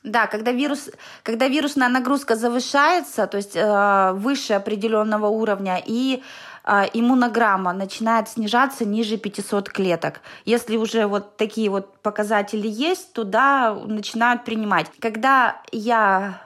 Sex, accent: female, native